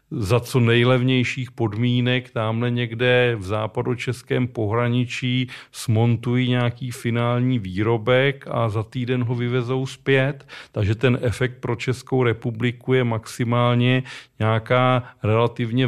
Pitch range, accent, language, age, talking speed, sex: 115-130 Hz, native, Czech, 40-59, 110 wpm, male